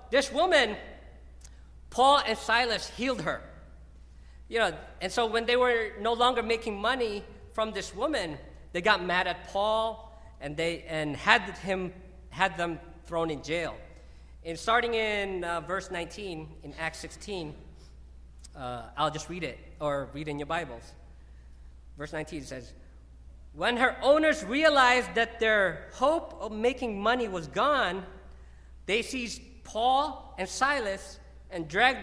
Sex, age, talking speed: male, 40-59, 145 wpm